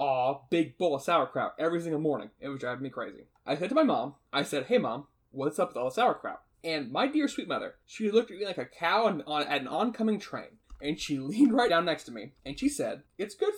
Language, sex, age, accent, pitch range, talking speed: English, male, 20-39, American, 140-225 Hz, 265 wpm